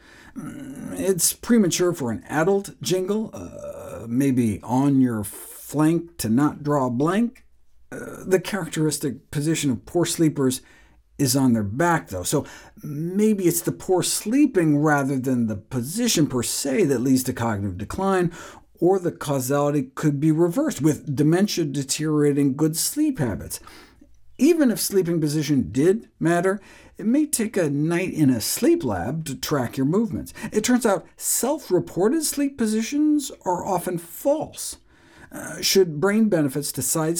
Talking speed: 145 wpm